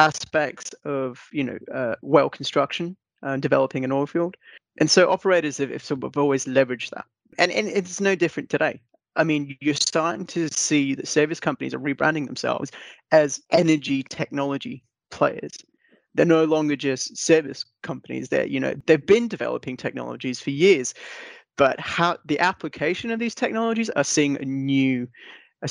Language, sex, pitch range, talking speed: English, male, 135-160 Hz, 165 wpm